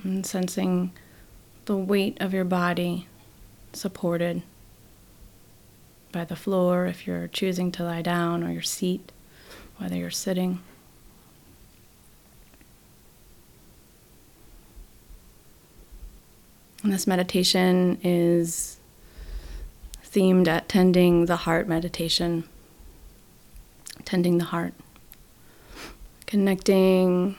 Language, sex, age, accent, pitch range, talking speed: English, female, 30-49, American, 165-185 Hz, 80 wpm